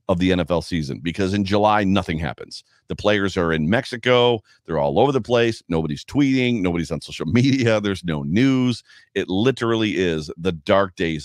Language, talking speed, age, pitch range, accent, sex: English, 175 wpm, 40-59, 90-120 Hz, American, male